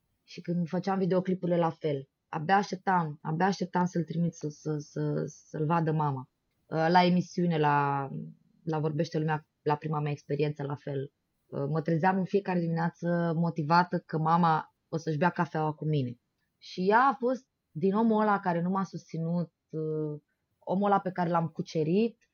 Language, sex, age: Romanian, female, 20-39